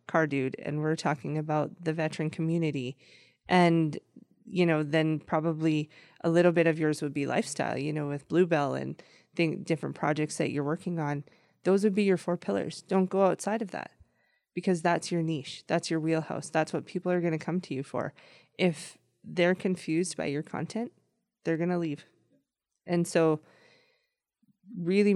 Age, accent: 20-39, American